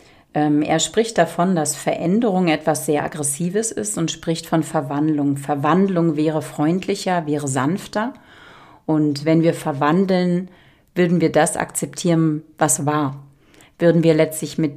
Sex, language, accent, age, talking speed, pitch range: female, German, German, 40-59, 130 wpm, 145-170 Hz